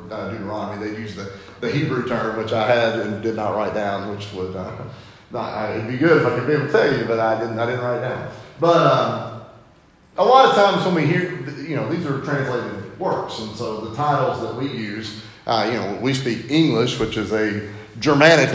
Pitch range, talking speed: 115-160 Hz, 225 wpm